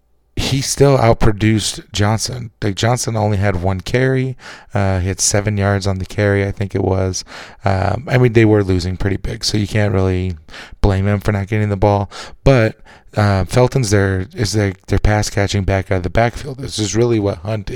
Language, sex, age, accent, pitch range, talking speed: English, male, 20-39, American, 95-110 Hz, 200 wpm